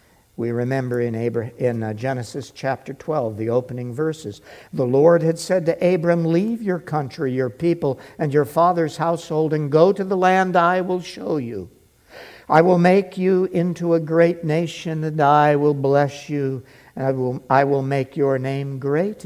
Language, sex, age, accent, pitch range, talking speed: English, male, 60-79, American, 120-165 Hz, 180 wpm